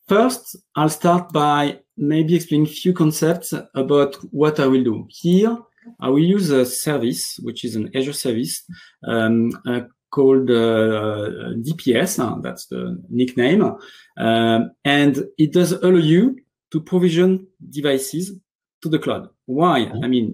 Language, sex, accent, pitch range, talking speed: English, male, French, 125-175 Hz, 140 wpm